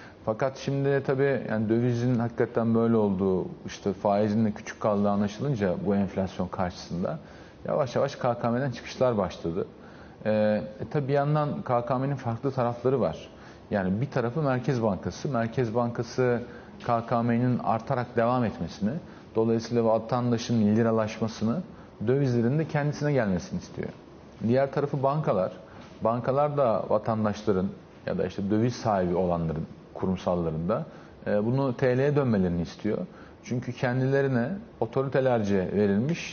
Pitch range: 105-135 Hz